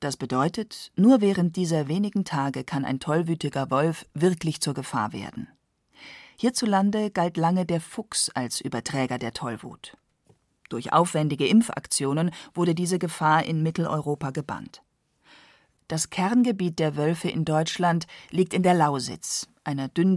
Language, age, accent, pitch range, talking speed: German, 40-59, German, 140-185 Hz, 135 wpm